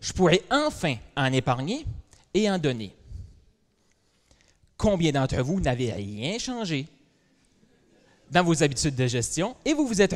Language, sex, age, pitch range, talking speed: French, male, 30-49, 115-175 Hz, 135 wpm